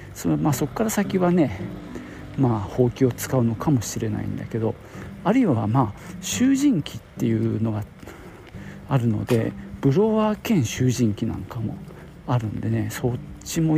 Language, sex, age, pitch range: Japanese, male, 50-69, 110-160 Hz